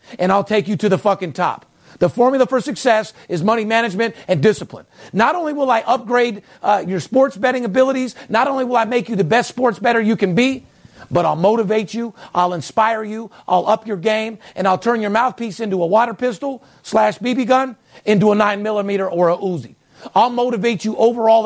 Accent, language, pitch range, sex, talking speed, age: American, English, 200-245 Hz, male, 205 wpm, 50-69